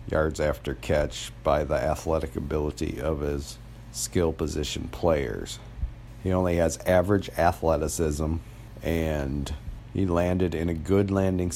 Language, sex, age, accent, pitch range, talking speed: English, male, 50-69, American, 80-100 Hz, 125 wpm